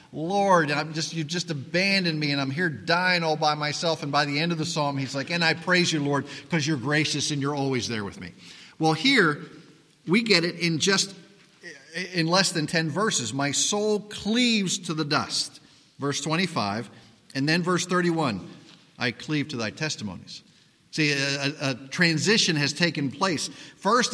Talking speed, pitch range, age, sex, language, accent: 185 wpm, 135-175 Hz, 50-69, male, English, American